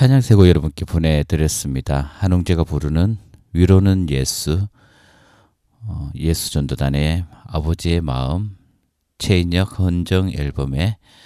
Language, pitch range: Korean, 75-100 Hz